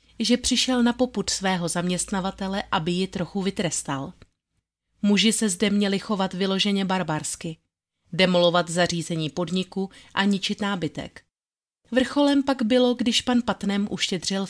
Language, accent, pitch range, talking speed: Czech, native, 165-200 Hz, 125 wpm